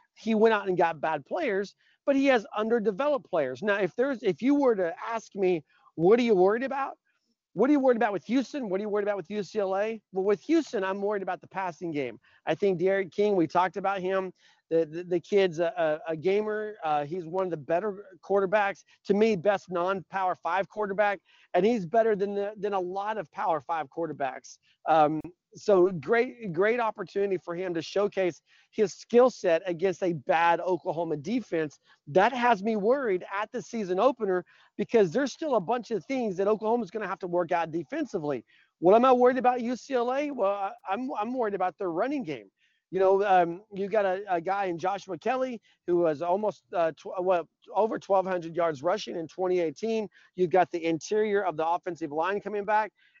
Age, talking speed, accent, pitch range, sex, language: 40-59, 200 wpm, American, 180-220 Hz, male, English